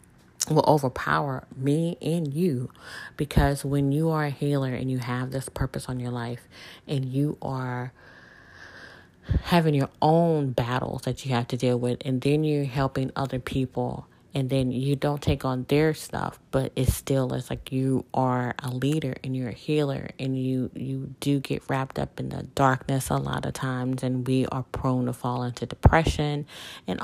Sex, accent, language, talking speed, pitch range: female, American, English, 180 wpm, 125-140 Hz